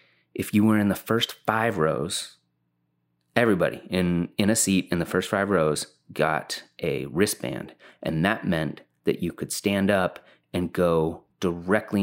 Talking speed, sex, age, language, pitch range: 160 wpm, male, 30-49, English, 75-105 Hz